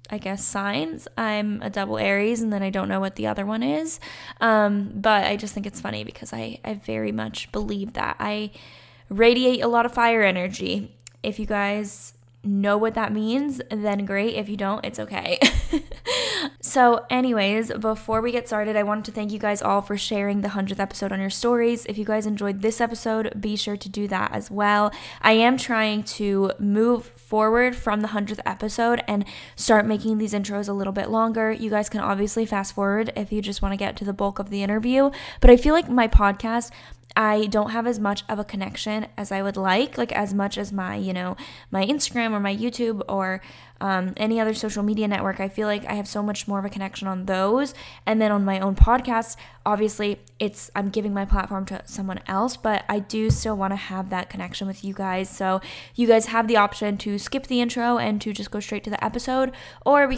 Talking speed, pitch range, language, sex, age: 220 wpm, 195-225 Hz, English, female, 10-29